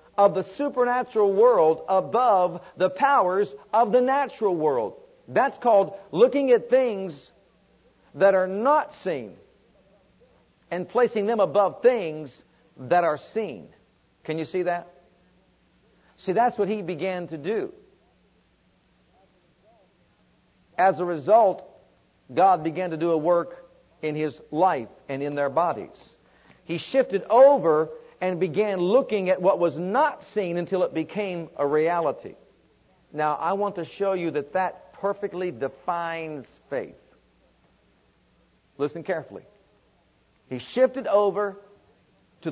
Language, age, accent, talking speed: English, 50-69, American, 125 wpm